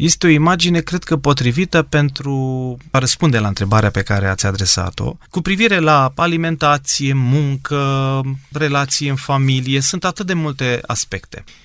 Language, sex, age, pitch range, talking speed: Romanian, male, 30-49, 125-175 Hz, 145 wpm